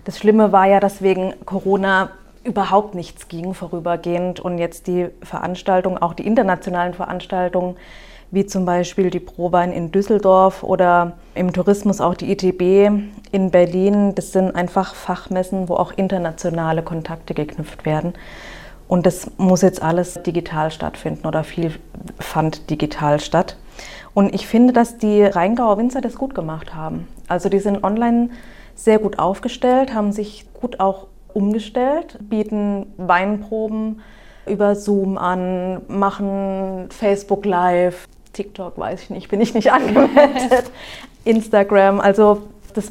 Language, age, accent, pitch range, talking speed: German, 30-49, German, 180-210 Hz, 135 wpm